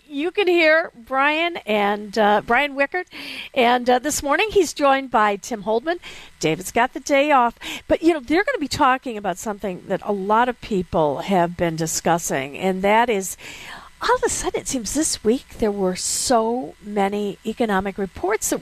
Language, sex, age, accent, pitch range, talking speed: English, female, 50-69, American, 210-285 Hz, 185 wpm